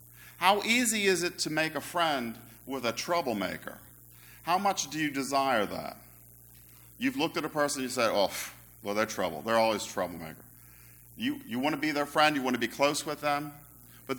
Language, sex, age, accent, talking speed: English, male, 50-69, American, 200 wpm